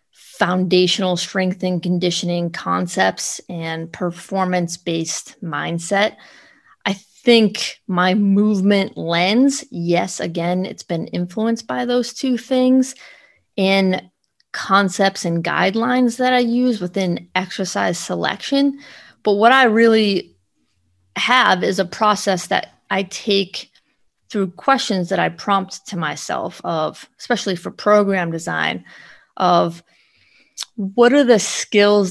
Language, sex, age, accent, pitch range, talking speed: English, female, 30-49, American, 175-215 Hz, 110 wpm